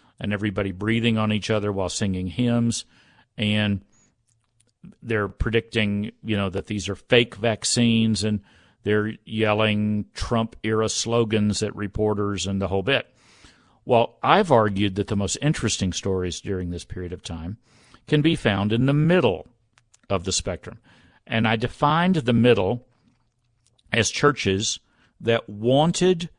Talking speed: 140 wpm